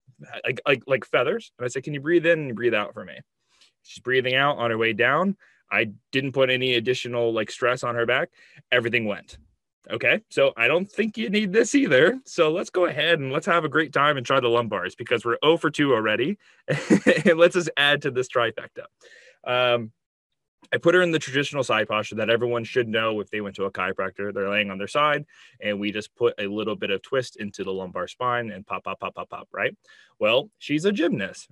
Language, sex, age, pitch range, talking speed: English, male, 20-39, 110-145 Hz, 225 wpm